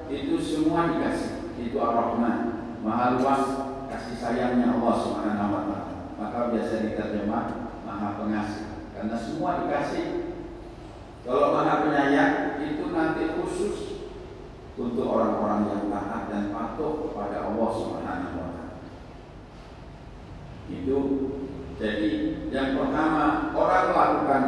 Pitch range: 110-165 Hz